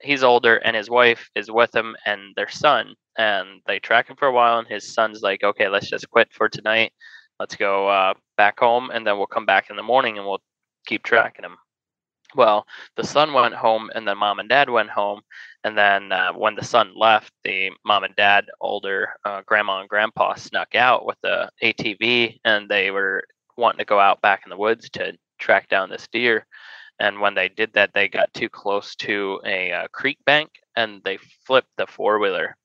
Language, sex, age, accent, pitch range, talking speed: English, male, 20-39, American, 100-115 Hz, 210 wpm